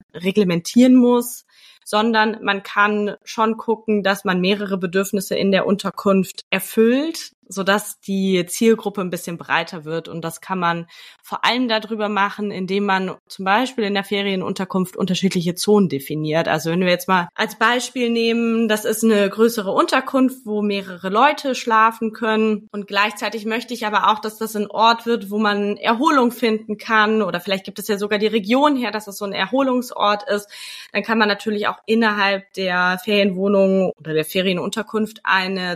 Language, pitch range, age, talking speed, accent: German, 190-225 Hz, 20-39, 170 wpm, German